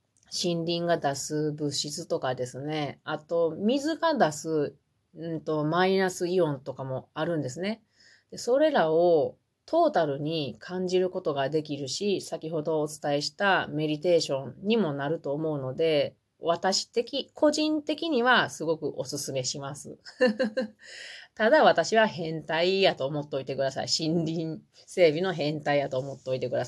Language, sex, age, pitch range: Japanese, female, 30-49, 150-200 Hz